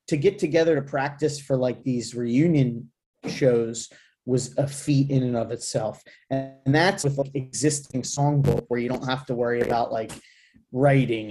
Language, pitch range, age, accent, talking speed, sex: English, 115-145 Hz, 30-49, American, 175 wpm, male